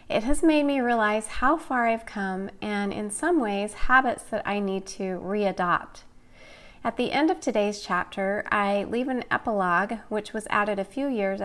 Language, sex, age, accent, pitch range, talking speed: English, female, 30-49, American, 190-235 Hz, 185 wpm